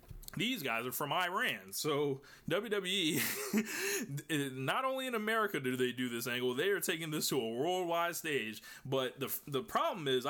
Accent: American